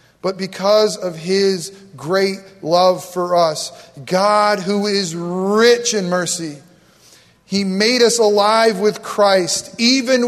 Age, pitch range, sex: 40-59, 175-220 Hz, male